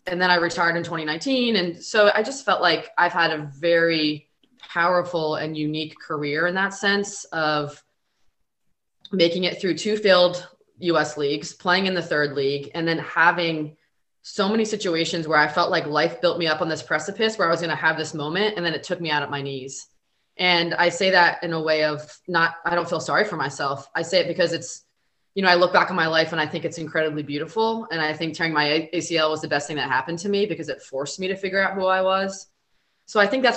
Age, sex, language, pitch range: 20-39, female, English, 155-180 Hz